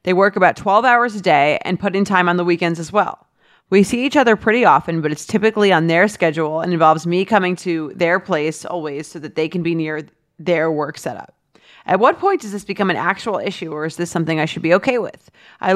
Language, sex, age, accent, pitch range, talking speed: English, female, 30-49, American, 160-205 Hz, 245 wpm